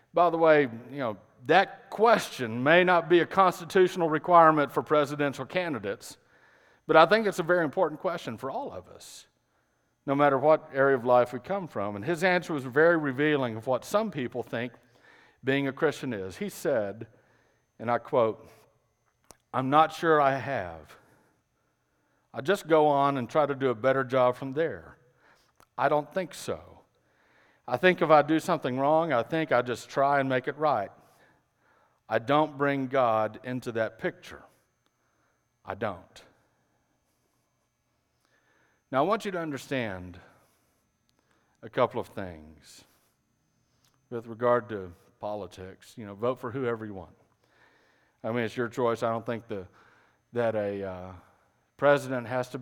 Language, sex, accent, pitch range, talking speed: English, male, American, 115-155 Hz, 160 wpm